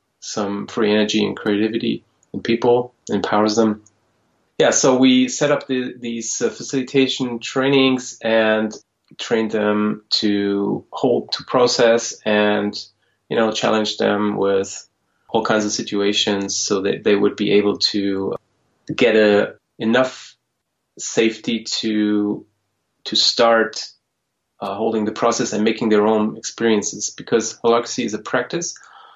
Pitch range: 105-115 Hz